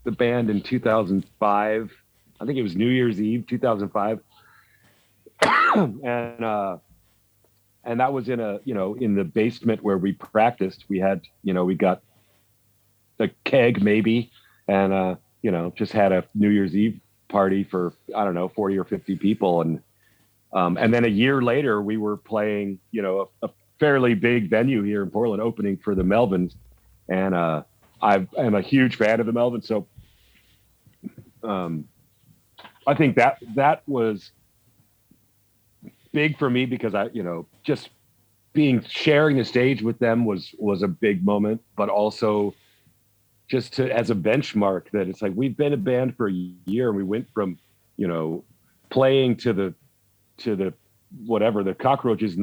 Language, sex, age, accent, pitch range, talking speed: English, male, 40-59, American, 95-115 Hz, 170 wpm